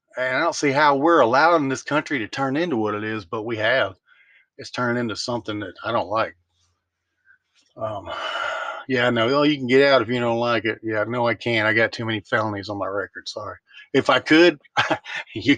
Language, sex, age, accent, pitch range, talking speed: English, male, 40-59, American, 115-145 Hz, 210 wpm